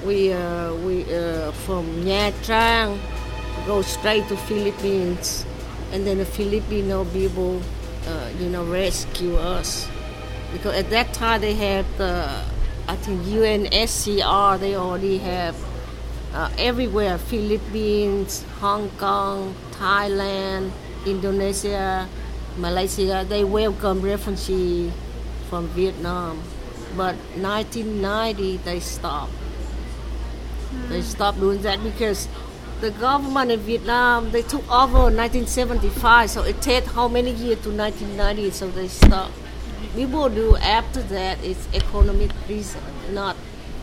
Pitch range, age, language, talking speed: 185-225 Hz, 50-69, English, 115 wpm